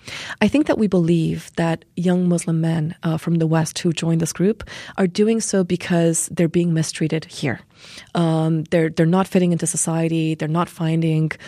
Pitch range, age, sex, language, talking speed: 160-190 Hz, 30-49, female, English, 200 wpm